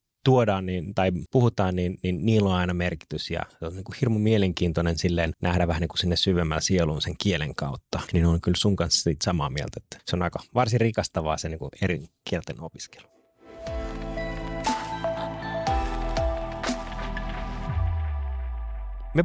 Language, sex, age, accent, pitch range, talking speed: Finnish, male, 30-49, native, 85-110 Hz, 145 wpm